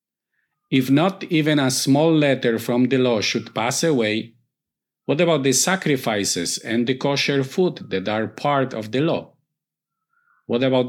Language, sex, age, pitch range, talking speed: English, male, 50-69, 115-155 Hz, 155 wpm